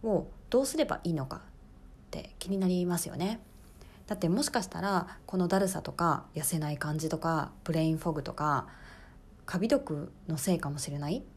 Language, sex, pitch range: Japanese, female, 155-215 Hz